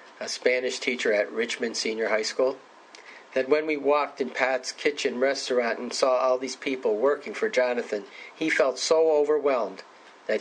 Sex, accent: male, American